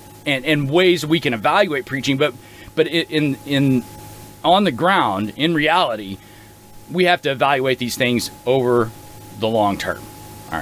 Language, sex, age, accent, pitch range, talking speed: English, male, 30-49, American, 105-160 Hz, 155 wpm